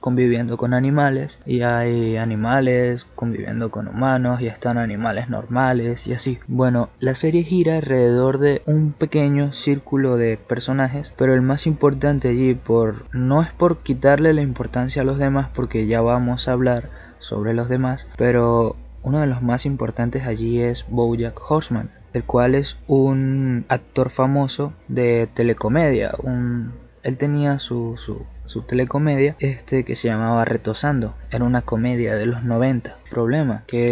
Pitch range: 120-135 Hz